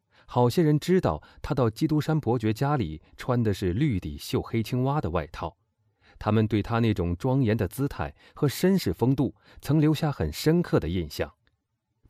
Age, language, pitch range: 30-49, Chinese, 95-130 Hz